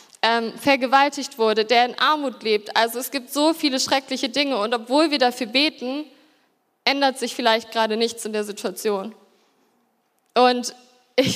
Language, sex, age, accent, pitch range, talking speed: German, female, 20-39, German, 230-270 Hz, 150 wpm